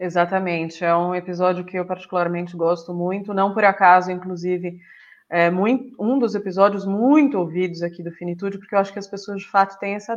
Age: 20-39